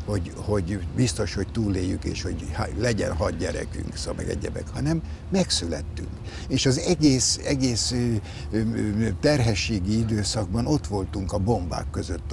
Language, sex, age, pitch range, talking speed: Hungarian, male, 60-79, 85-115 Hz, 130 wpm